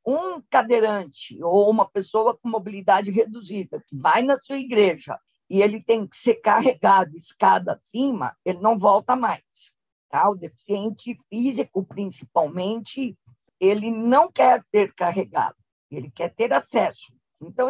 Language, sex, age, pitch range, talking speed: Portuguese, female, 50-69, 190-255 Hz, 130 wpm